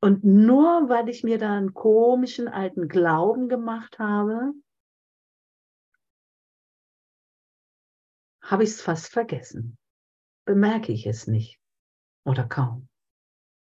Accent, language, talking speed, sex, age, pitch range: German, German, 100 wpm, female, 50-69, 130-220 Hz